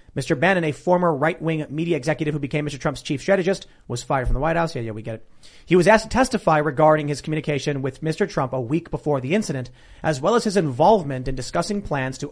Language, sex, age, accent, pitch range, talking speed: English, male, 30-49, American, 135-170 Hz, 240 wpm